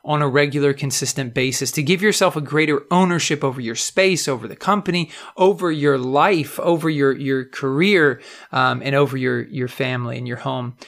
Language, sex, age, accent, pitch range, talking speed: English, male, 30-49, American, 130-170 Hz, 180 wpm